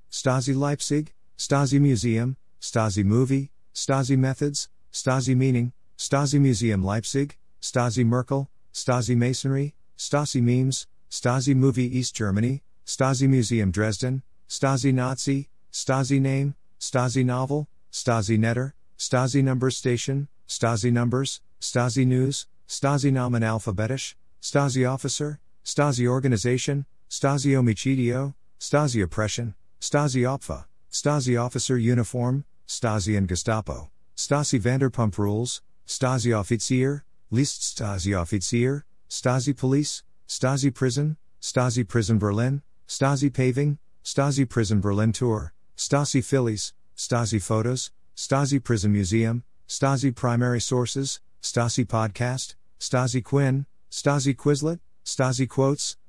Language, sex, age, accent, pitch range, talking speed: English, male, 50-69, American, 115-135 Hz, 105 wpm